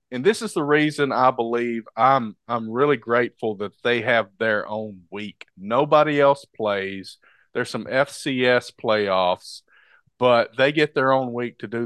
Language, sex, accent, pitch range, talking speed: English, male, American, 105-130 Hz, 160 wpm